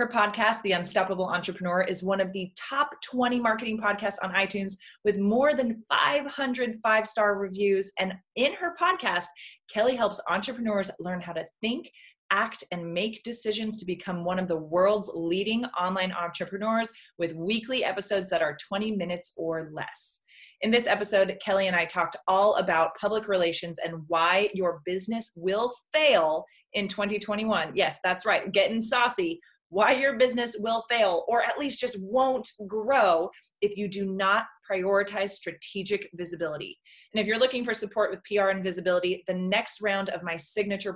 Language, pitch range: English, 180-225 Hz